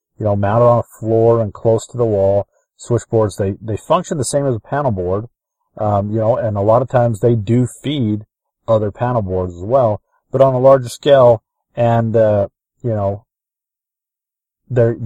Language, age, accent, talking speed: English, 40-59, American, 185 wpm